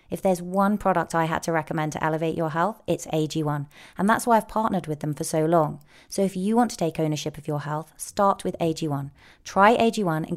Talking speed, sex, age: 230 wpm, female, 30-49